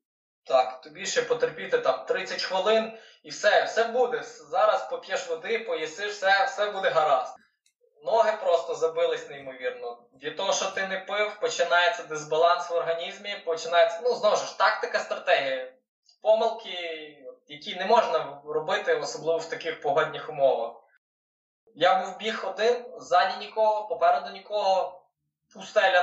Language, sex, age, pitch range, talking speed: Ukrainian, male, 20-39, 160-225 Hz, 135 wpm